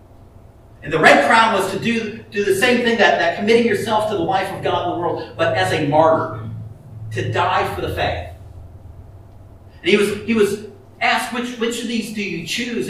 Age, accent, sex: 50-69, American, male